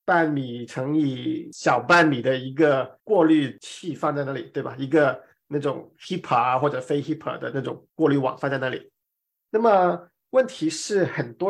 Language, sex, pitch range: Chinese, male, 140-170 Hz